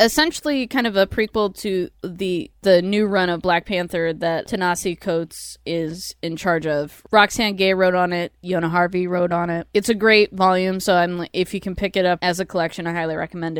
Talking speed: 210 wpm